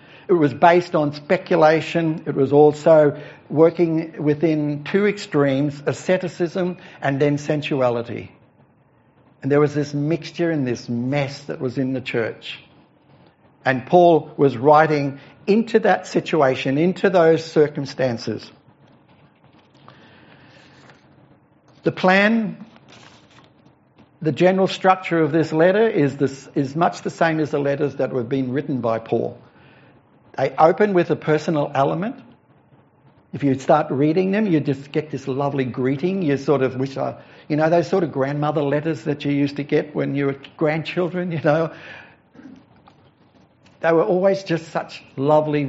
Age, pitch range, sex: 60-79, 140-170 Hz, male